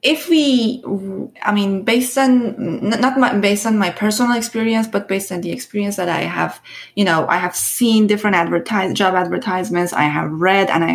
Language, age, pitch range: English, 20-39, 185-240 Hz